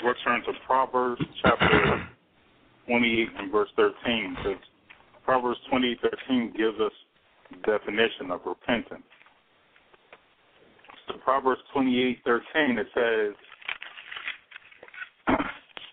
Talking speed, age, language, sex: 100 wpm, 40-59, English, male